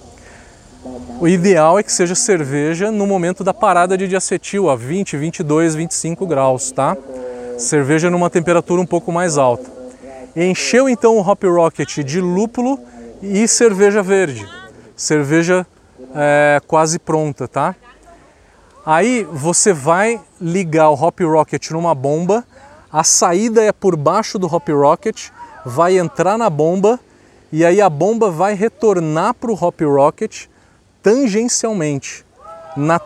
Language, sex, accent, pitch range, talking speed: Portuguese, male, Brazilian, 155-215 Hz, 130 wpm